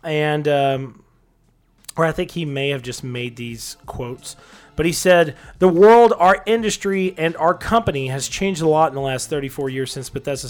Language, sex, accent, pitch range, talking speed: English, male, American, 140-185 Hz, 190 wpm